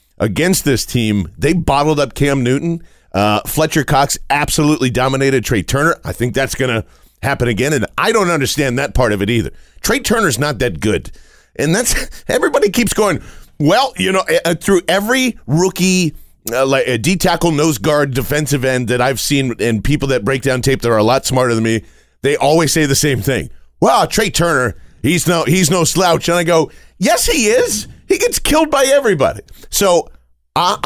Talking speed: 190 wpm